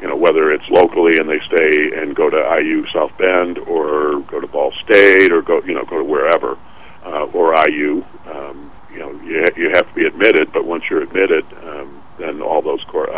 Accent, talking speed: American, 225 wpm